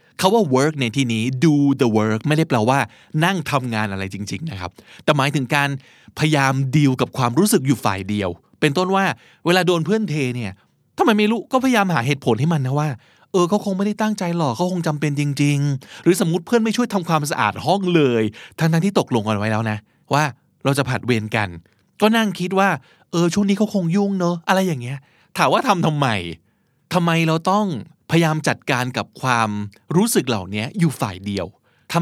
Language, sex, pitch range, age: Thai, male, 115-170 Hz, 20-39